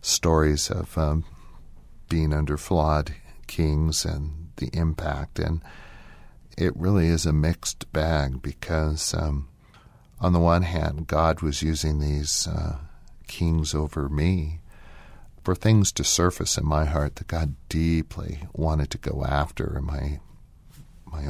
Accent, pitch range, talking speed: American, 70-85 Hz, 135 wpm